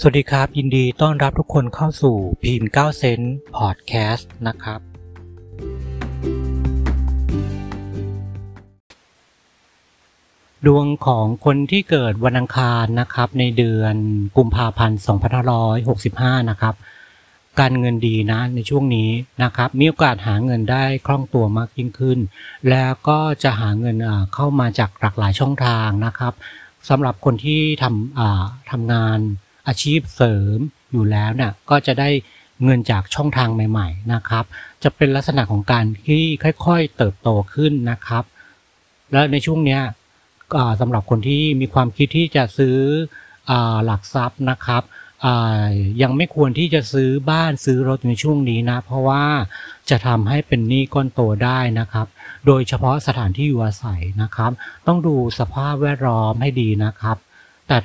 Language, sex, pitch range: Thai, male, 110-135 Hz